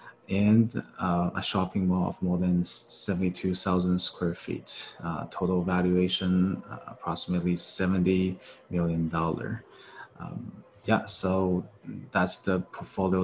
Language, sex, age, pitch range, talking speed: English, male, 20-39, 90-100 Hz, 110 wpm